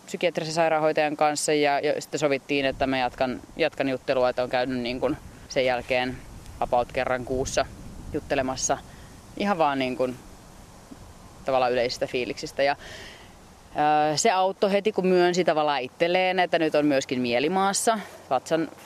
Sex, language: female, Finnish